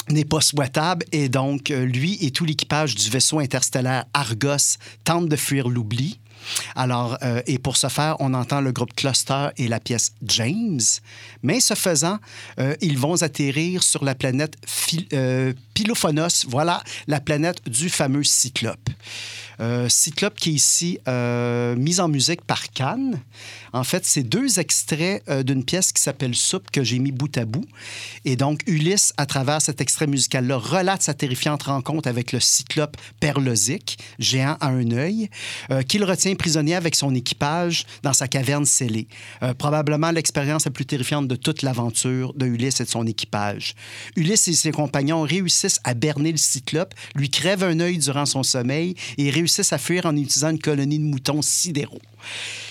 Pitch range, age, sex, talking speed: 125-155 Hz, 50-69, male, 175 wpm